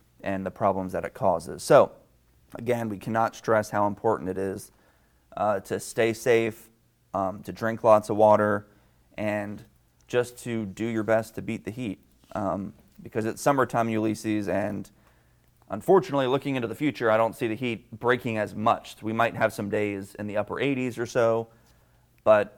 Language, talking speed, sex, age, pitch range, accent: English, 175 wpm, male, 30-49, 100-120 Hz, American